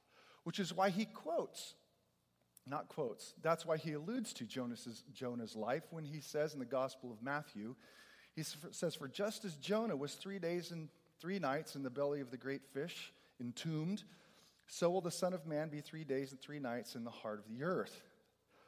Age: 40-59